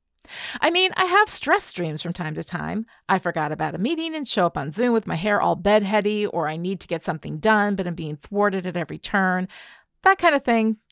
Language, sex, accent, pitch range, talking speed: English, female, American, 175-230 Hz, 235 wpm